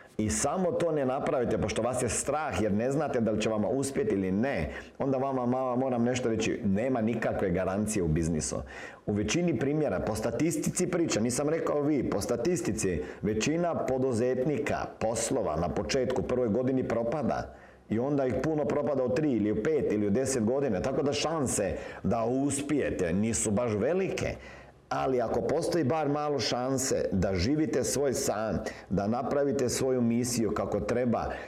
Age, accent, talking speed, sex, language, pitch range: 50-69, native, 165 wpm, male, Croatian, 105-145 Hz